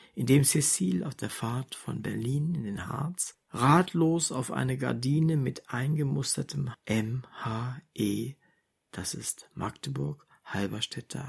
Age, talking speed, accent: 60-79, 120 wpm, German